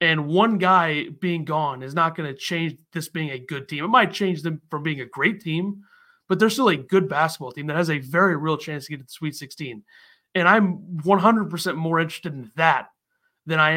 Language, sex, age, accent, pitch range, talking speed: English, male, 30-49, American, 145-175 Hz, 225 wpm